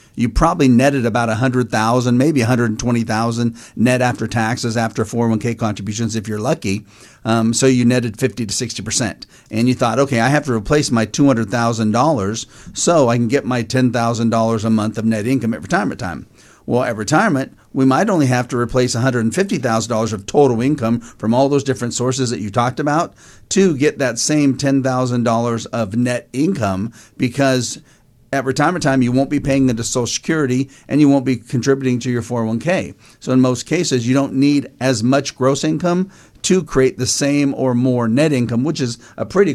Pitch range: 115-140 Hz